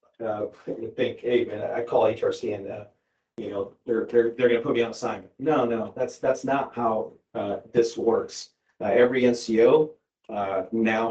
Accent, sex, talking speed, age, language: American, male, 190 wpm, 40-59, English